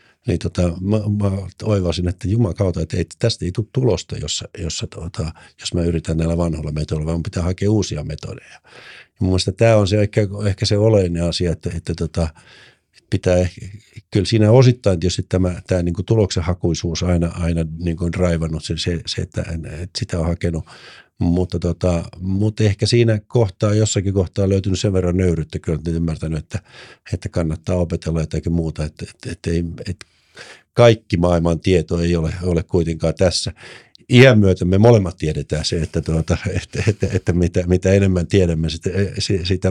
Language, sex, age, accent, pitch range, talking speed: Finnish, male, 50-69, native, 85-105 Hz, 180 wpm